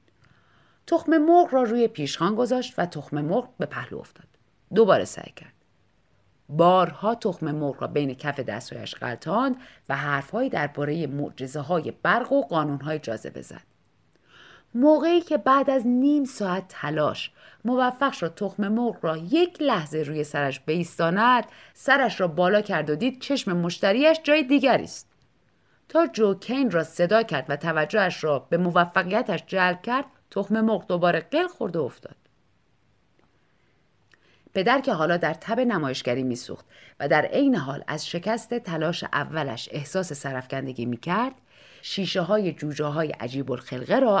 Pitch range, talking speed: 145-230 Hz, 140 wpm